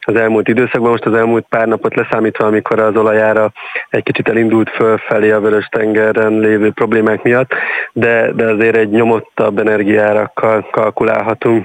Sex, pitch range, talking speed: male, 110-115 Hz, 145 wpm